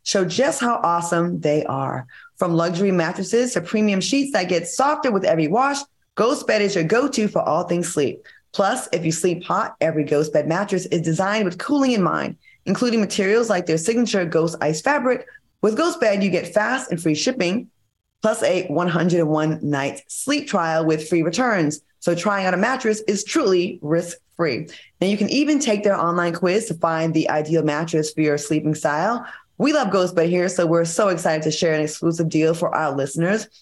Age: 20-39